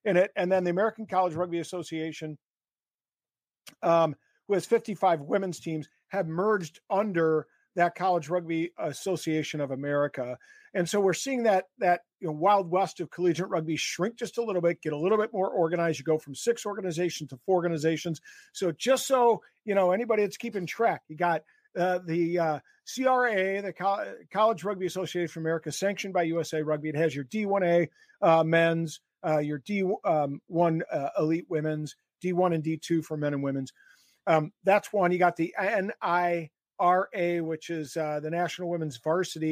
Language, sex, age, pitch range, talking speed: English, male, 50-69, 160-190 Hz, 175 wpm